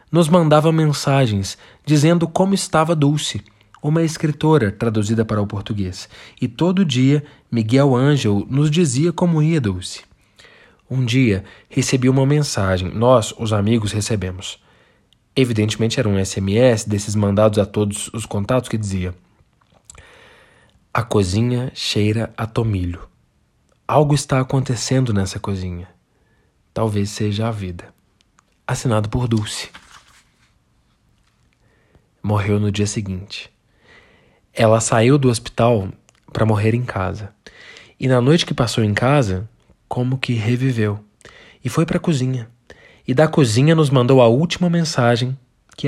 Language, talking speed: Portuguese, 125 wpm